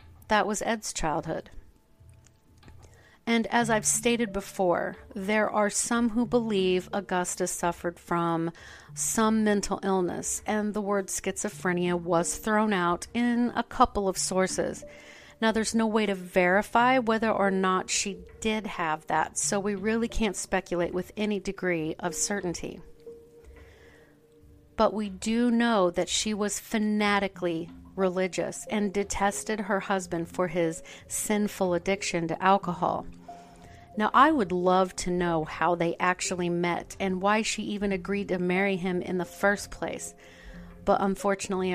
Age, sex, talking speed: 40-59, female, 140 wpm